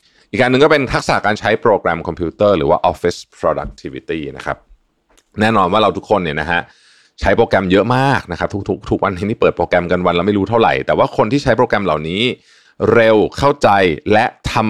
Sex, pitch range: male, 90-115 Hz